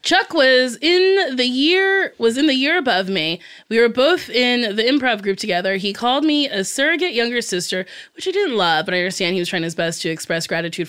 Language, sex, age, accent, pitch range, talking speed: English, female, 20-39, American, 190-280 Hz, 225 wpm